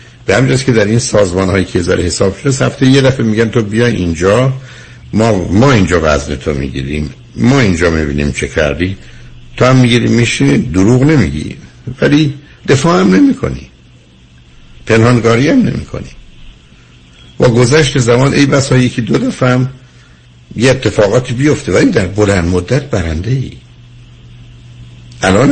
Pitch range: 80-125 Hz